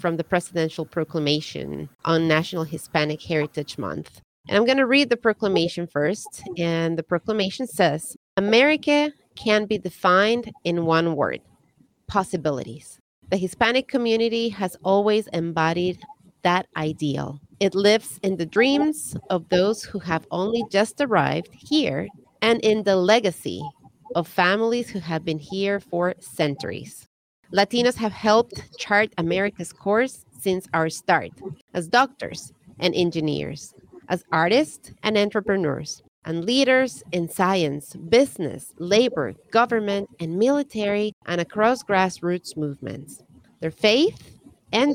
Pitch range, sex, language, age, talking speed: 165-220 Hz, female, English, 30-49, 125 wpm